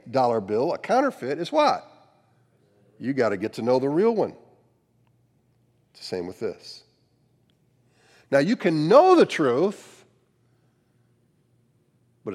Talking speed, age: 130 wpm, 50-69